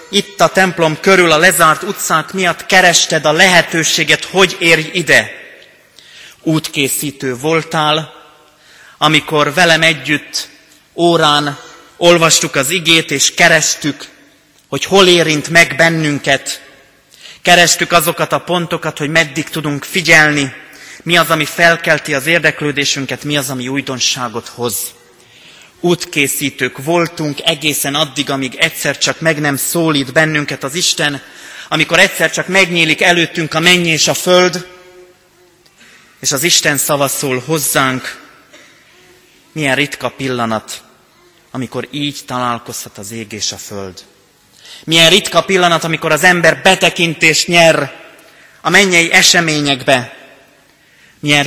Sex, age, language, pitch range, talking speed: male, 30-49, Hungarian, 140-170 Hz, 120 wpm